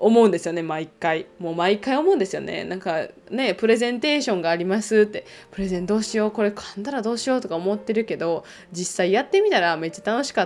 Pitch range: 180-225 Hz